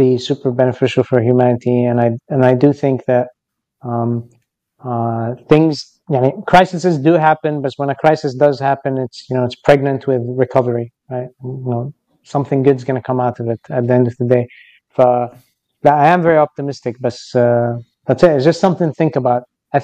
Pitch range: 125-150 Hz